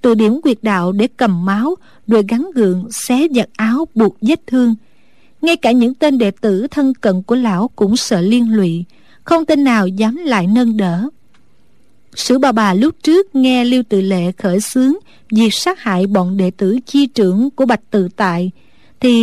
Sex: female